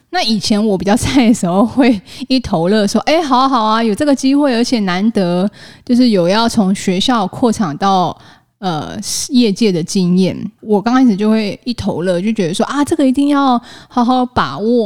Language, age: Chinese, 20-39